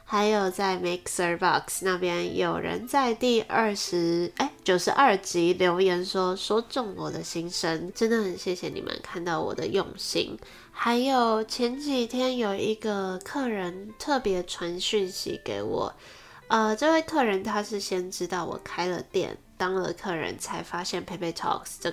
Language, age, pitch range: Chinese, 20-39, 175-220 Hz